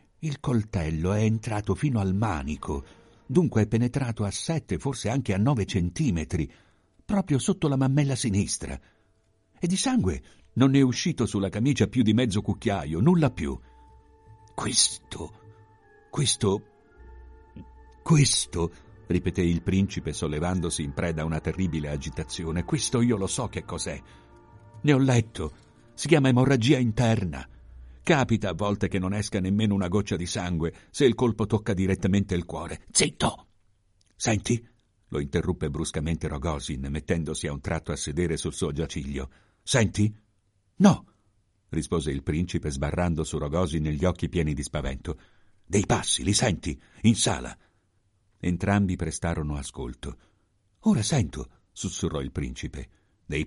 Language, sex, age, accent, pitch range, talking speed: Italian, male, 60-79, native, 85-110 Hz, 140 wpm